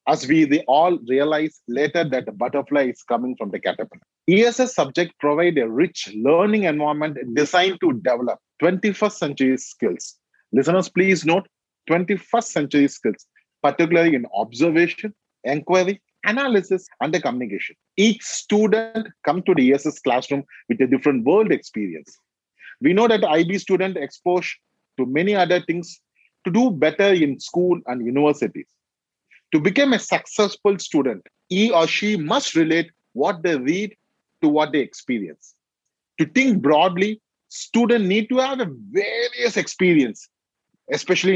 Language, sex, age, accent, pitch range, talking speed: English, male, 30-49, Indian, 150-210 Hz, 140 wpm